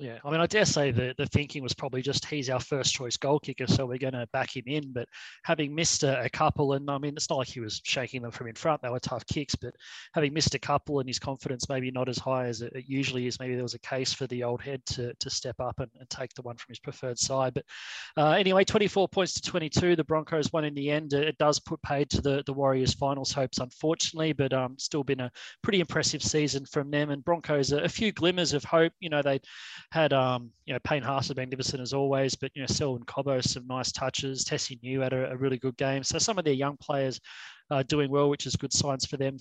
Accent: Australian